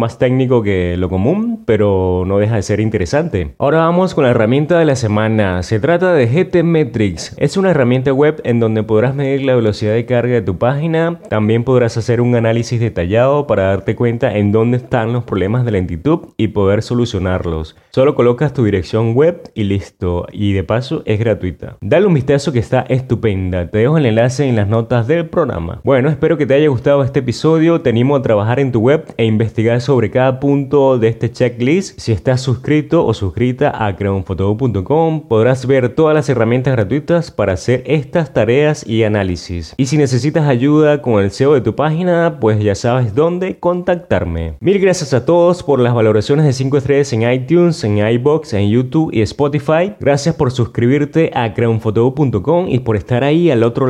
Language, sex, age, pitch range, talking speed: Spanish, male, 30-49, 110-150 Hz, 190 wpm